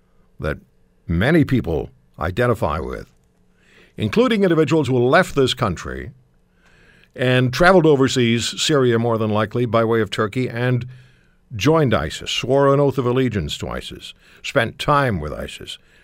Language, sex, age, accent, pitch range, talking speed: English, male, 60-79, American, 115-140 Hz, 135 wpm